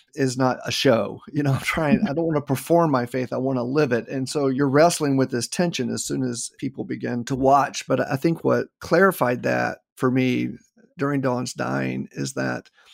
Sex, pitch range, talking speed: male, 120-150 Hz, 220 wpm